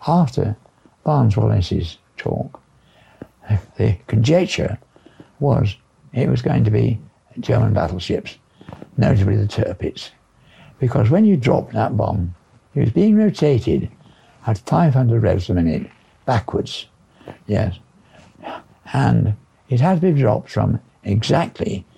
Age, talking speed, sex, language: 60-79, 115 wpm, male, English